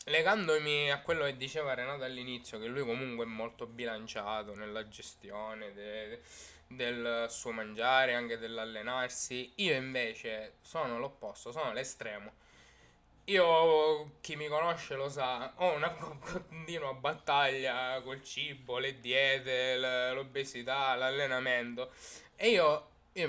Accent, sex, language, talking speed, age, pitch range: native, male, Italian, 125 wpm, 20-39, 120-150 Hz